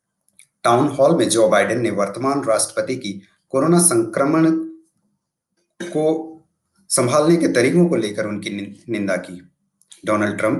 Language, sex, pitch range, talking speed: Hindi, male, 120-175 Hz, 120 wpm